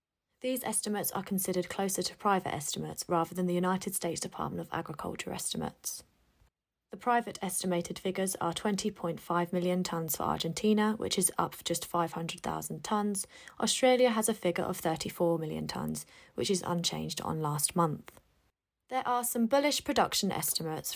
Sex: female